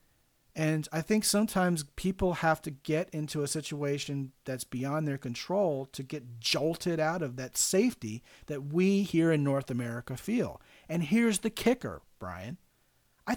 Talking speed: 155 wpm